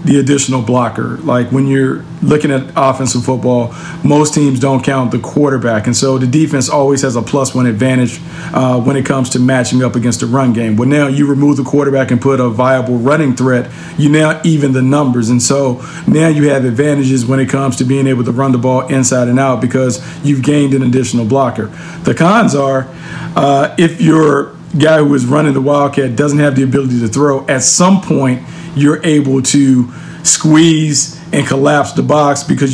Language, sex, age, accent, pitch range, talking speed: English, male, 40-59, American, 130-155 Hz, 200 wpm